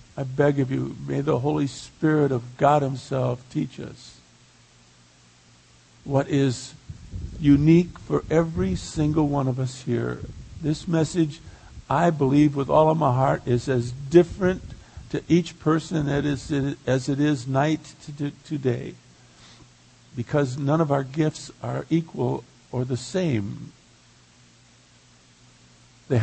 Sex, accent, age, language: male, American, 50-69, English